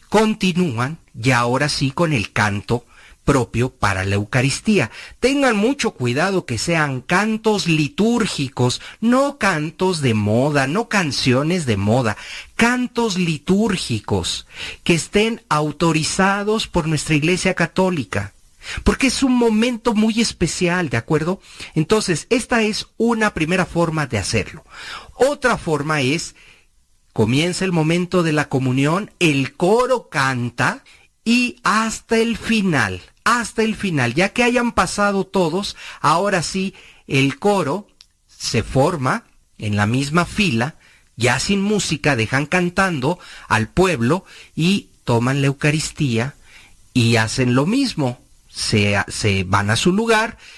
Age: 40-59